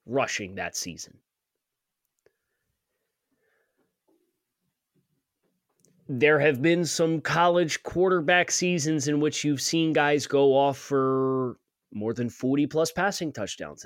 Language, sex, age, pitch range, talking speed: English, male, 30-49, 115-165 Hz, 105 wpm